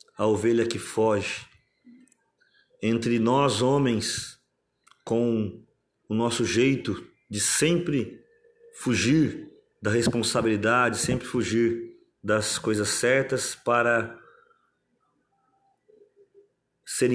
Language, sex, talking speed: Portuguese, male, 80 wpm